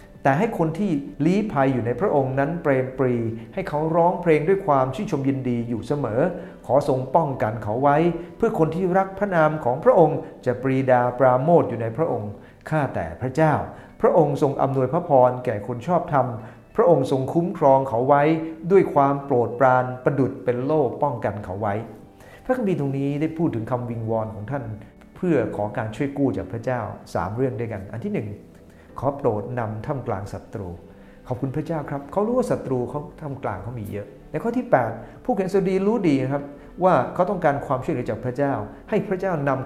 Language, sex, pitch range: English, male, 120-160 Hz